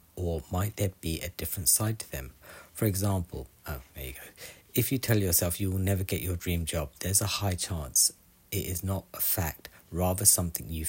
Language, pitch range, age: English, 85-105 Hz, 40-59